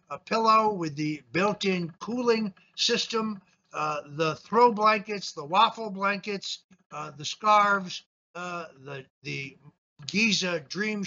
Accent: American